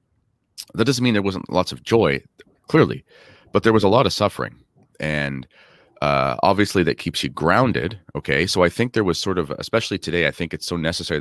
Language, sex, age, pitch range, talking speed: English, male, 30-49, 75-110 Hz, 205 wpm